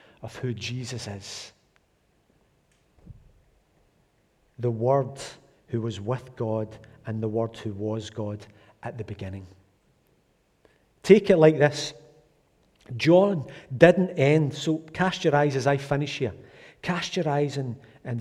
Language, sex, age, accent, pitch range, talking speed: English, male, 40-59, British, 120-160 Hz, 130 wpm